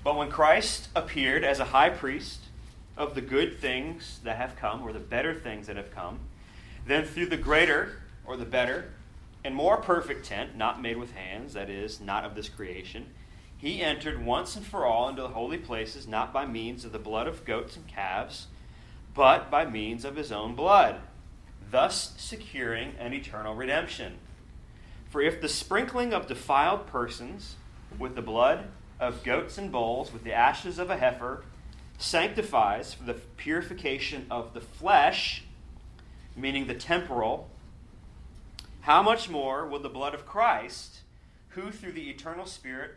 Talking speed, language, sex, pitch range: 165 wpm, English, male, 105-150 Hz